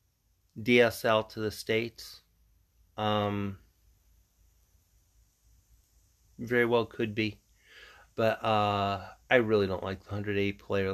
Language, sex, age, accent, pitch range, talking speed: English, male, 30-49, American, 100-115 Hz, 100 wpm